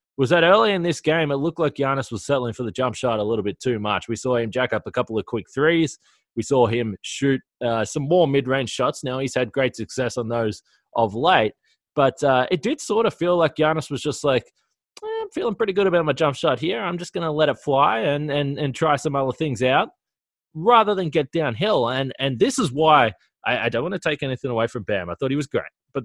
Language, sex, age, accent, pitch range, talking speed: English, male, 20-39, Australian, 120-160 Hz, 255 wpm